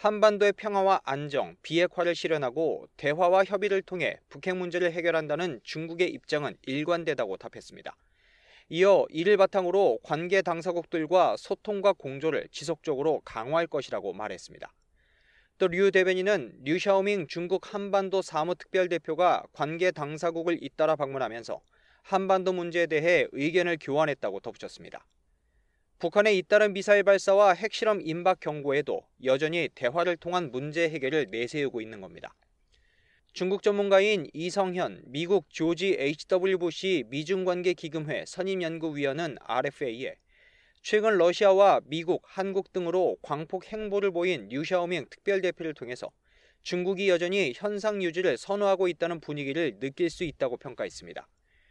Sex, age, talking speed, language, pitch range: male, 30-49, 105 wpm, English, 160-195 Hz